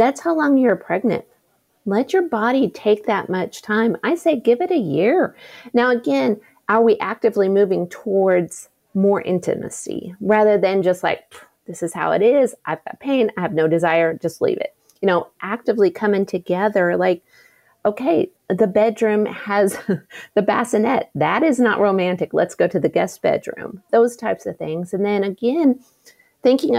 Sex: female